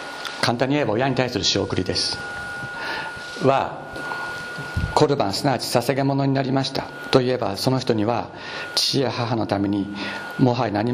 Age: 60-79